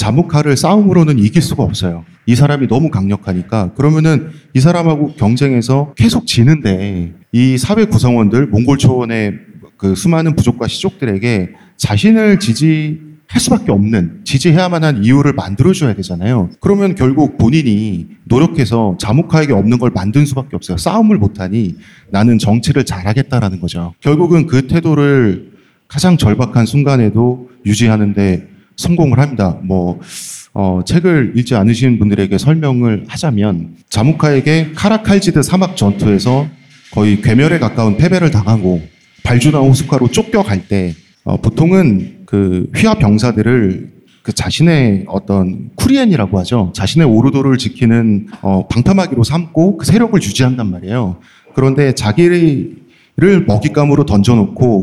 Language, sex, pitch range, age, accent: Korean, male, 105-155 Hz, 40-59, native